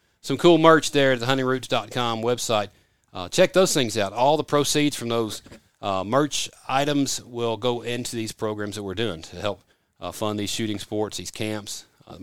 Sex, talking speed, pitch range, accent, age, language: male, 190 wpm, 110-140 Hz, American, 40-59, English